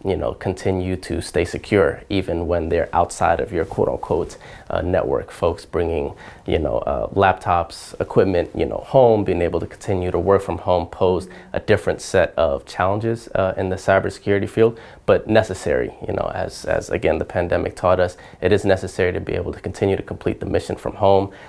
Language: English